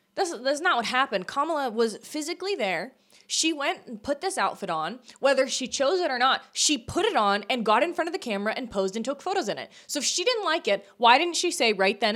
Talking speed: 250 wpm